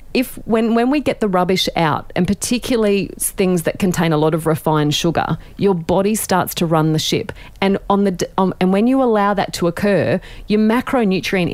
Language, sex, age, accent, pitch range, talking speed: English, female, 30-49, Australian, 155-200 Hz, 200 wpm